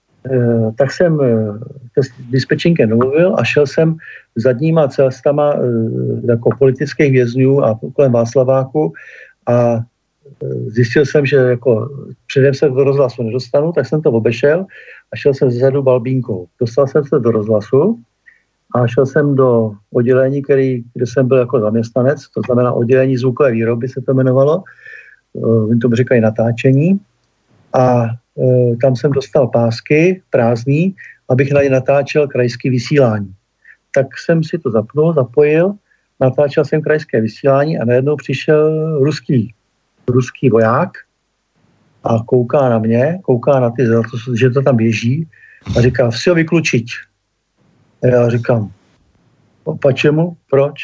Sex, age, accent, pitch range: male, 50-69, native, 120-145 Hz